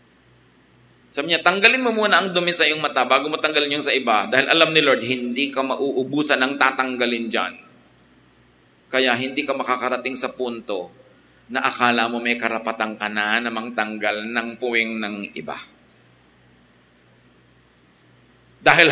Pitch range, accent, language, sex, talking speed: 125-160 Hz, Filipino, English, male, 140 wpm